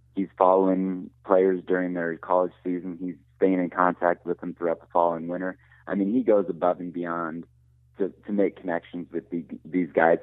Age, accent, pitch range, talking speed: 30-49, American, 80-90 Hz, 195 wpm